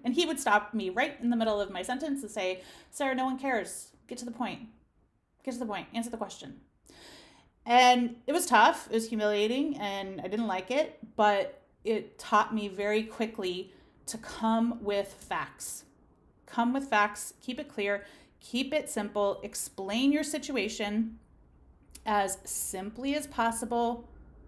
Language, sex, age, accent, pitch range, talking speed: English, female, 30-49, American, 195-255 Hz, 165 wpm